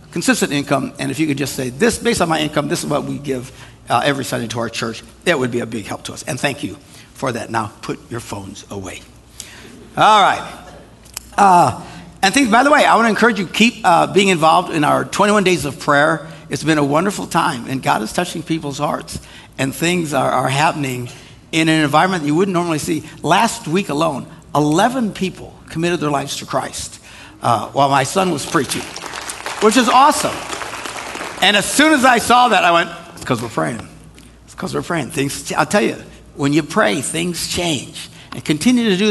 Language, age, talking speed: English, 60-79, 210 wpm